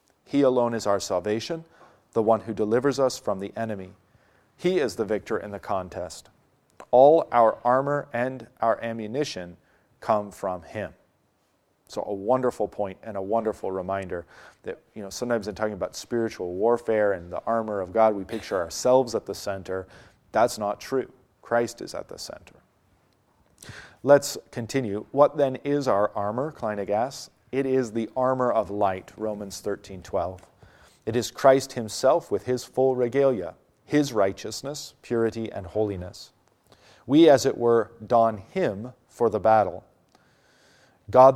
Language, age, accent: English, 40-59, American